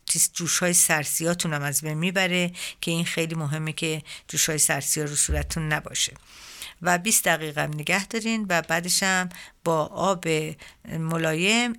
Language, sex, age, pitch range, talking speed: Persian, female, 50-69, 155-185 Hz, 150 wpm